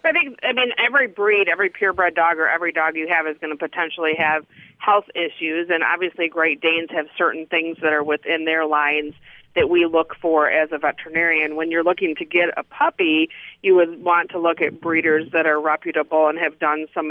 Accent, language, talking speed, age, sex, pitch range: American, English, 215 wpm, 30-49, female, 155-175 Hz